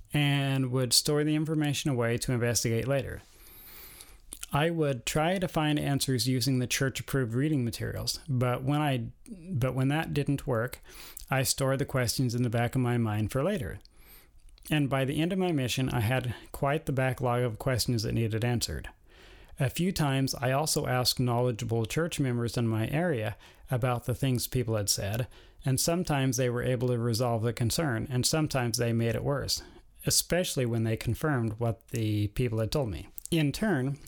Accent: American